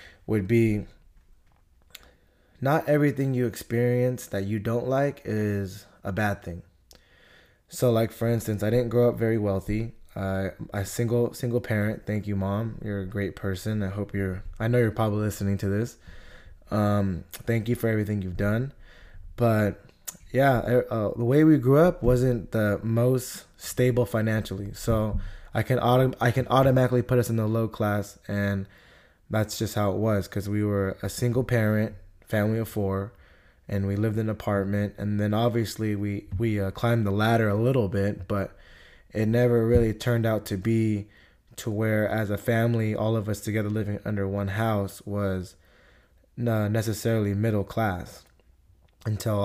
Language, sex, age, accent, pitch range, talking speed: English, male, 20-39, American, 100-115 Hz, 170 wpm